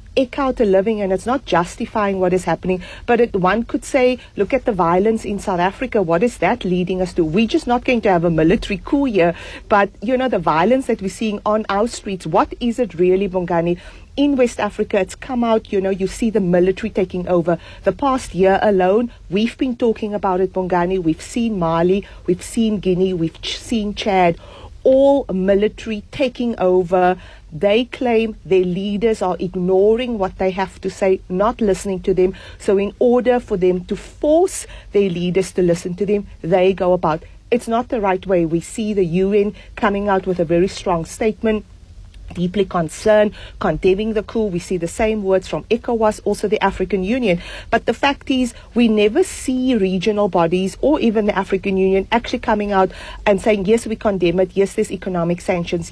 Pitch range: 185-230 Hz